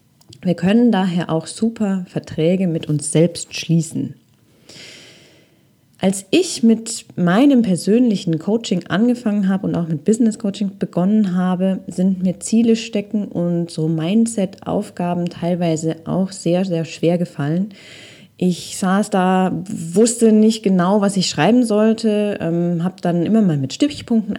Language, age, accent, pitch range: German, 20-39, German, 170-220 Hz